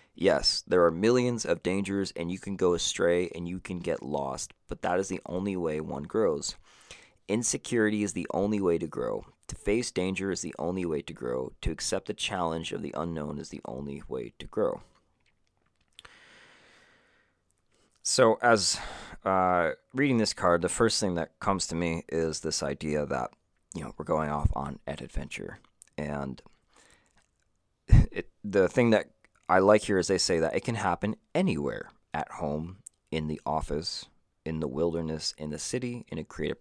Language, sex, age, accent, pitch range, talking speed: English, male, 30-49, American, 75-100 Hz, 175 wpm